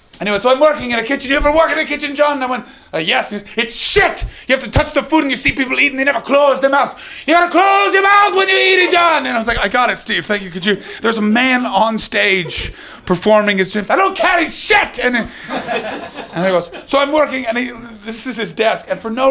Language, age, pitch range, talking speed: English, 30-49, 185-280 Hz, 270 wpm